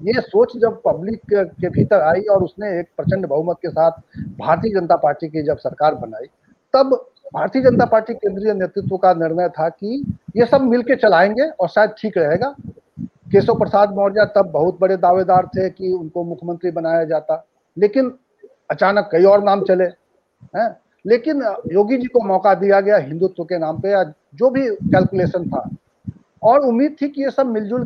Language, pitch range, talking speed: Hindi, 185-245 Hz, 175 wpm